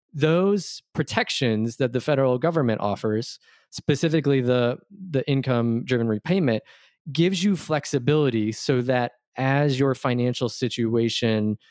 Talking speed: 110 wpm